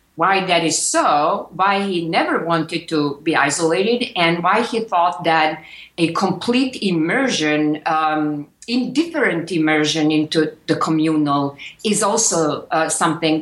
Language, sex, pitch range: English, female, 150-190 Hz